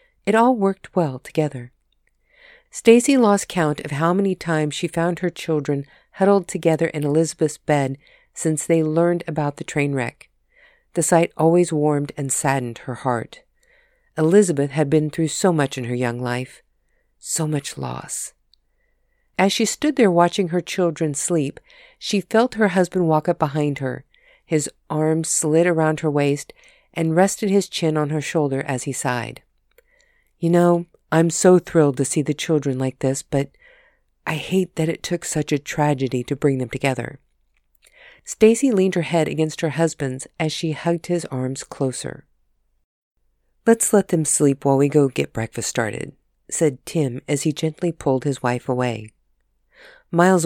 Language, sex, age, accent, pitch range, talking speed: English, female, 50-69, American, 145-180 Hz, 165 wpm